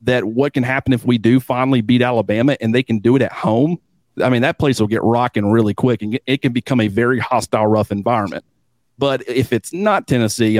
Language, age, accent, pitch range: English, 40-59, American, 115-135 Hz